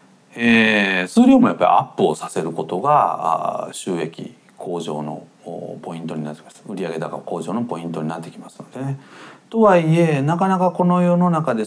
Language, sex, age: Japanese, male, 40-59